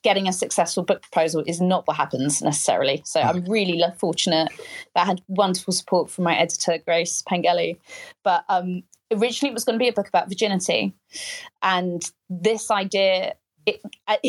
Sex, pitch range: female, 165-200 Hz